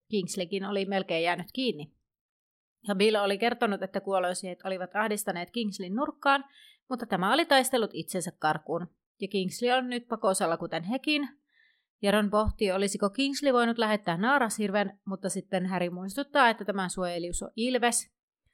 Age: 30-49